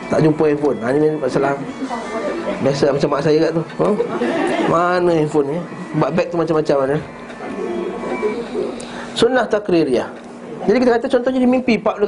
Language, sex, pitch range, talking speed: Malay, male, 145-210 Hz, 140 wpm